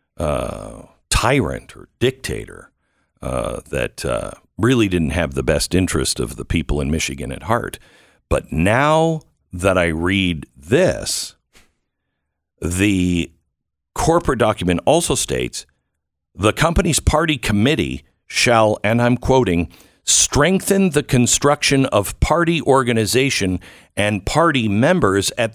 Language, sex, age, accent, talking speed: English, male, 50-69, American, 115 wpm